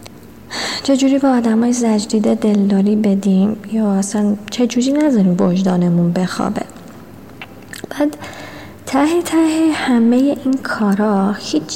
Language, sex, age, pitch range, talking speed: Persian, female, 30-49, 195-230 Hz, 95 wpm